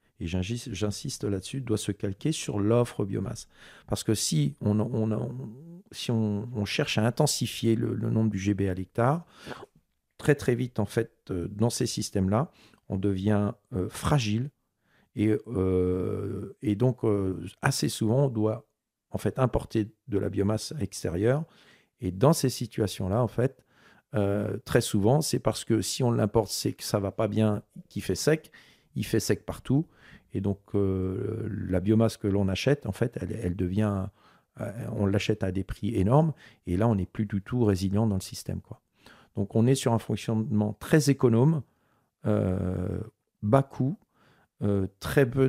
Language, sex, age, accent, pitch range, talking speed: French, male, 50-69, French, 100-125 Hz, 175 wpm